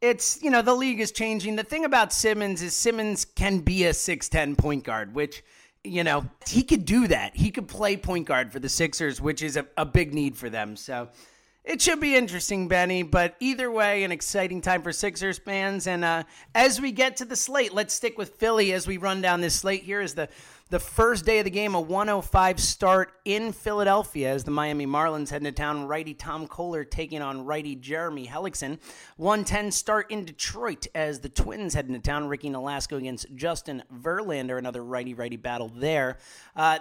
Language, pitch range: English, 145-205 Hz